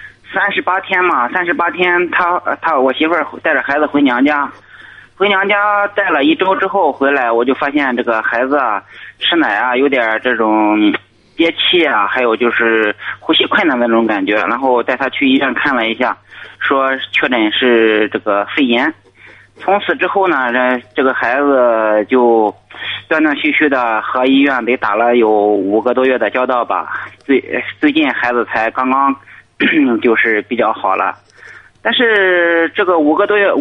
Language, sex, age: Chinese, male, 20-39